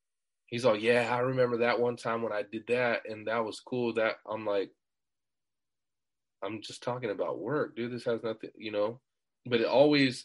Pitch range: 115-150 Hz